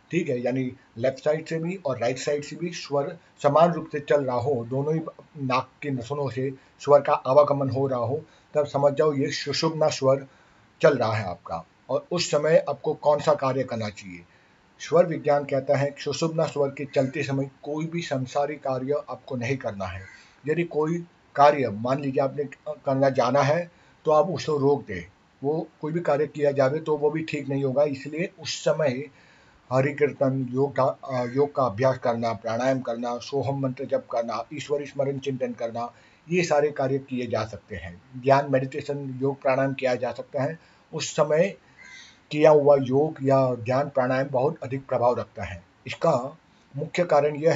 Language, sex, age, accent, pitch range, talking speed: Hindi, male, 50-69, native, 130-150 Hz, 185 wpm